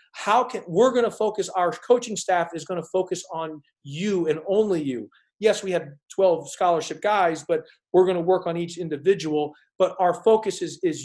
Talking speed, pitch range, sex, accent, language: 200 wpm, 165-200 Hz, male, American, English